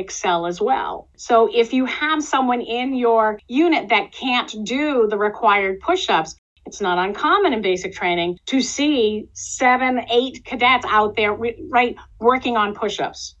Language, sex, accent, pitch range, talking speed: English, female, American, 200-275 Hz, 150 wpm